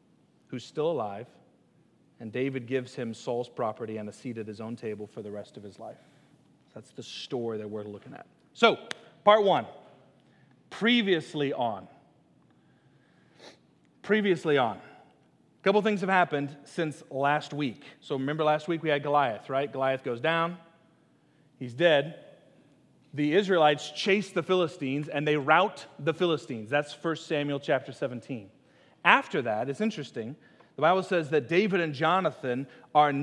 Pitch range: 130-175 Hz